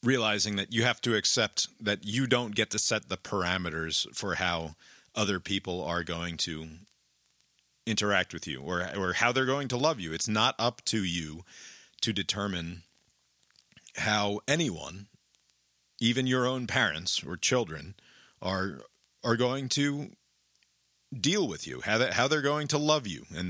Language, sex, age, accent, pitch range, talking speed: English, male, 40-59, American, 90-125 Hz, 160 wpm